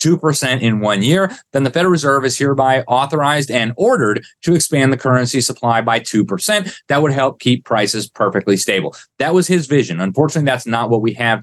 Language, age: English, 30-49